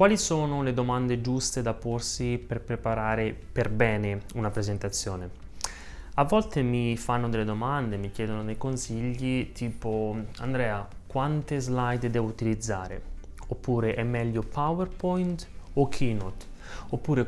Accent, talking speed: native, 125 wpm